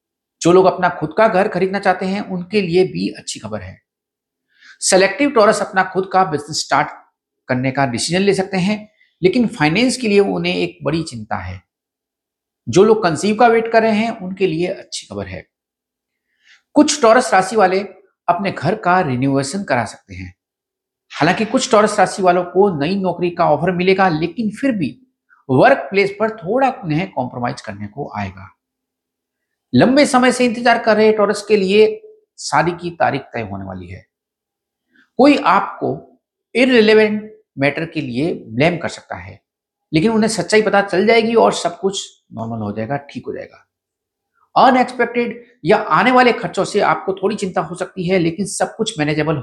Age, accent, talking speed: 50-69, native, 170 wpm